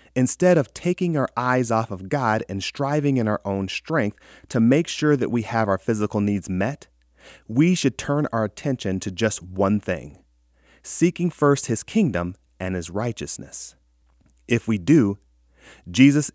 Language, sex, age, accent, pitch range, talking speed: English, male, 30-49, American, 95-130 Hz, 160 wpm